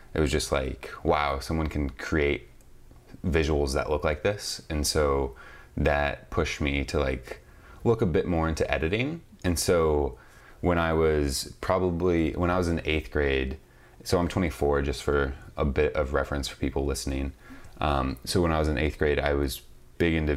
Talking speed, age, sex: 185 wpm, 20-39, male